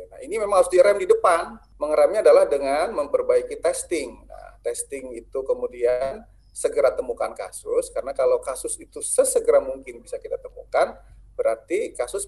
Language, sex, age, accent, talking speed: Indonesian, male, 30-49, native, 145 wpm